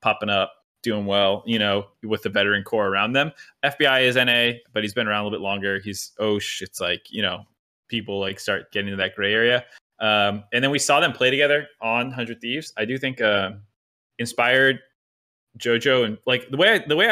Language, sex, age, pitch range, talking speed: English, male, 20-39, 100-120 Hz, 215 wpm